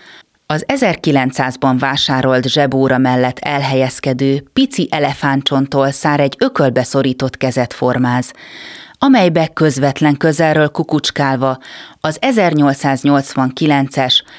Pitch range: 125-145 Hz